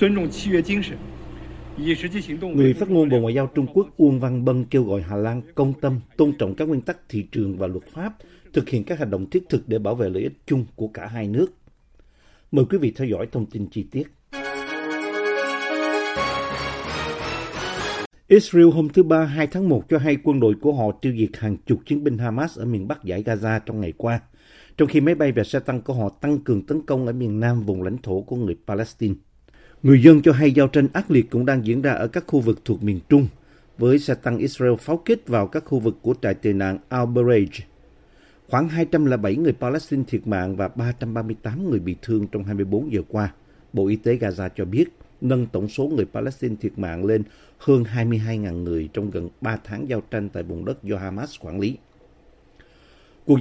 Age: 50-69